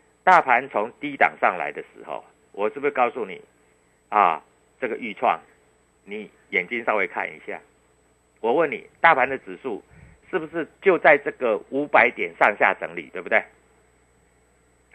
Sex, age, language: male, 50-69, Chinese